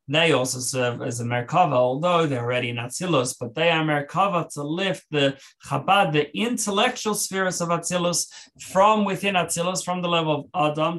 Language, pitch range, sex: English, 125-160 Hz, male